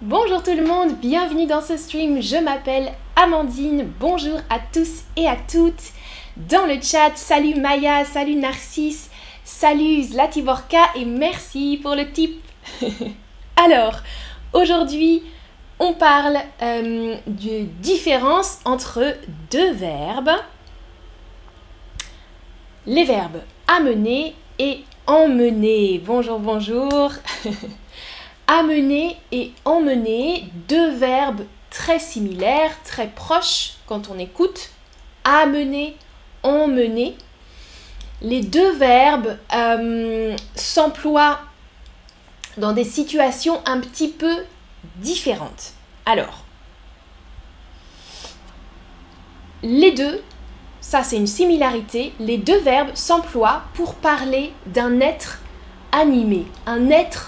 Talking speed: 95 wpm